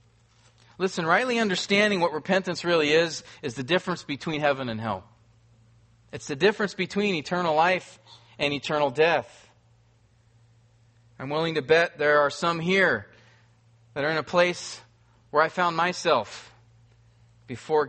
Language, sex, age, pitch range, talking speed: English, male, 40-59, 115-165 Hz, 140 wpm